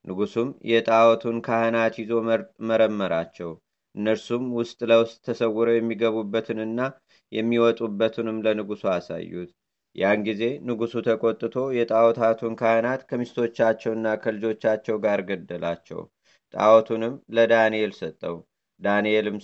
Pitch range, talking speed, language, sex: 110-115 Hz, 85 wpm, Amharic, male